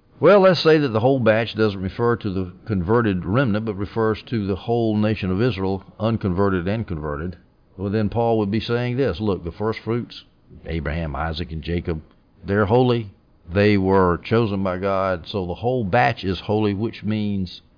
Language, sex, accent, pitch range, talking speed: English, male, American, 90-120 Hz, 180 wpm